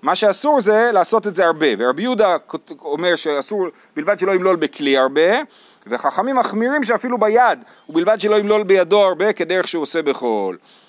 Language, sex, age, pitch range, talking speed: Hebrew, male, 40-59, 150-225 Hz, 165 wpm